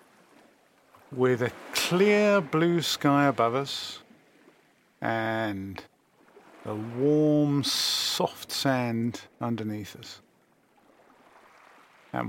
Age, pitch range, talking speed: 50-69, 115-150 Hz, 75 wpm